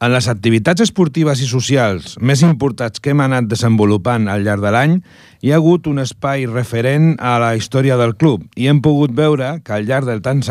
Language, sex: Italian, male